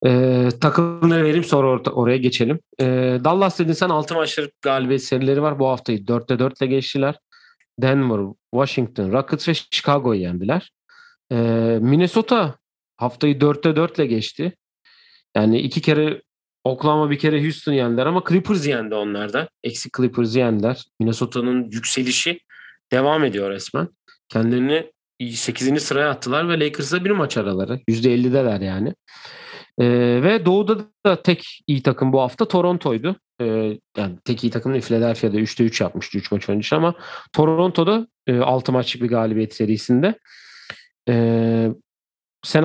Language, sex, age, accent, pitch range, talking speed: Turkish, male, 40-59, native, 120-155 Hz, 135 wpm